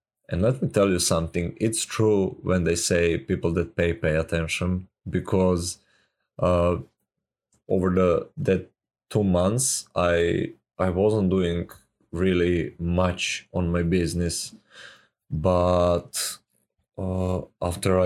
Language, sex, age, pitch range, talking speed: English, male, 20-39, 85-95 Hz, 115 wpm